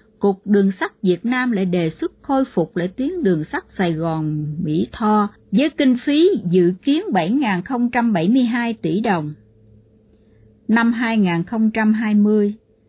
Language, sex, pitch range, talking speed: Vietnamese, female, 175-245 Hz, 130 wpm